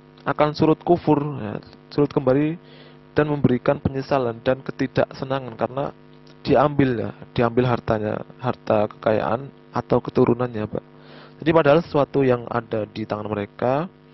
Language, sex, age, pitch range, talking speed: Indonesian, male, 20-39, 105-135 Hz, 120 wpm